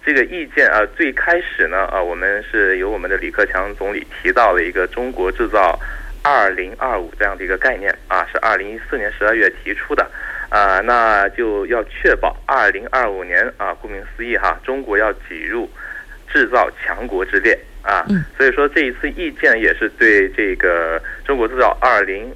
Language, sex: Korean, male